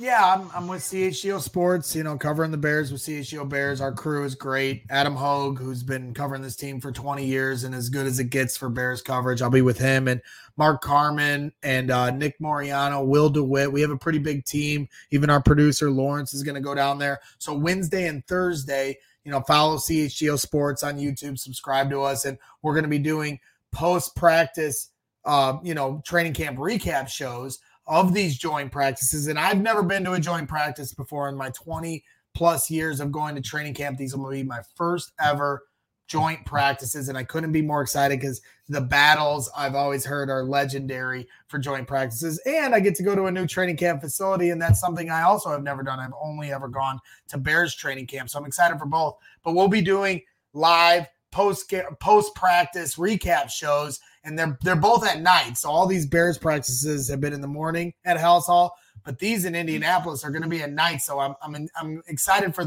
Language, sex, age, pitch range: English, male, 30-49, 135-165 Hz